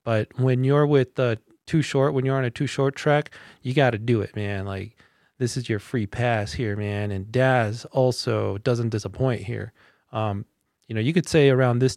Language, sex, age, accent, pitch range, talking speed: English, male, 30-49, American, 110-140 Hz, 205 wpm